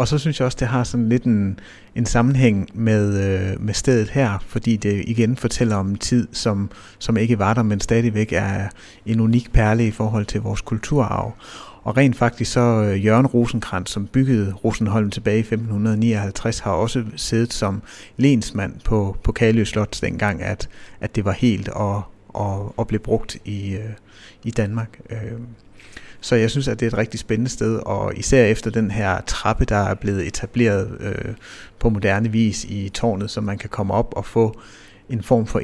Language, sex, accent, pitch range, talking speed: Danish, male, native, 100-115 Hz, 190 wpm